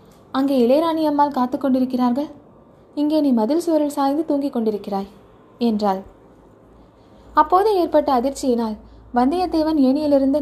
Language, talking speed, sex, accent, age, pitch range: Tamil, 100 wpm, female, native, 20-39, 240-300 Hz